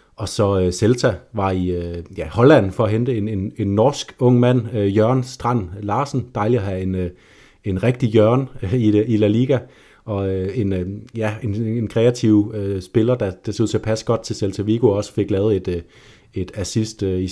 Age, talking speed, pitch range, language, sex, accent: 30-49, 185 wpm, 100-120 Hz, Danish, male, native